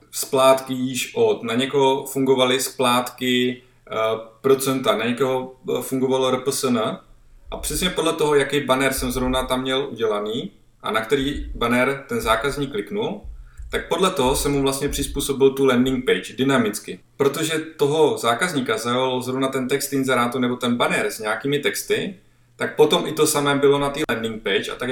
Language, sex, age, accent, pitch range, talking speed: Czech, male, 20-39, native, 120-135 Hz, 165 wpm